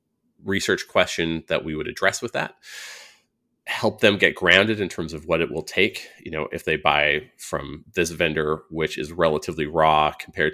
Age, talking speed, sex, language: 30-49, 180 wpm, male, English